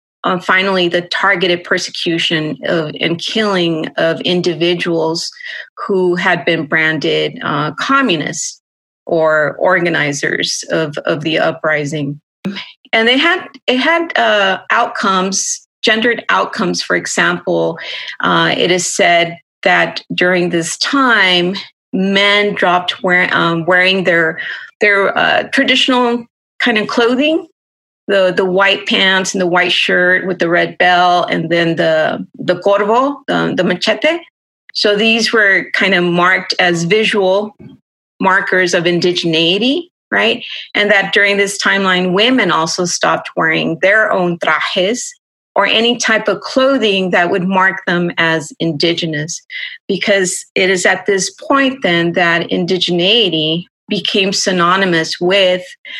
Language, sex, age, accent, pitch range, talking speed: English, female, 30-49, American, 175-220 Hz, 130 wpm